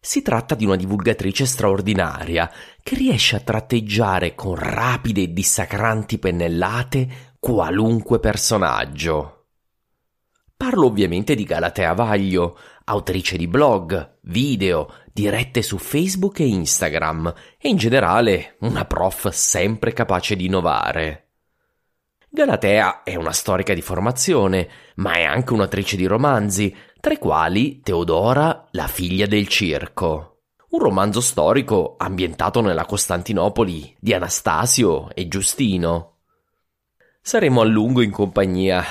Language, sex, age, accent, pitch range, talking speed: English, male, 30-49, Italian, 90-115 Hz, 115 wpm